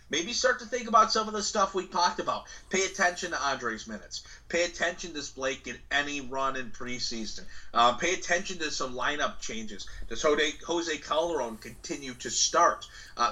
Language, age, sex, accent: English, 30-49, male, American